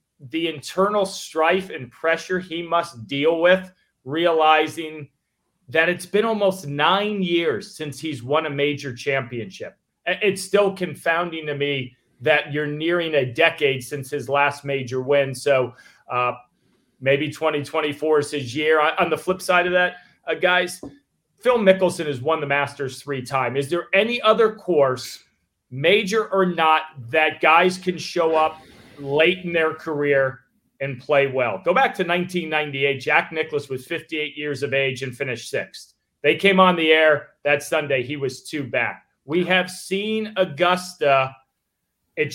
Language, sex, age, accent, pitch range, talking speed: English, male, 30-49, American, 140-180 Hz, 155 wpm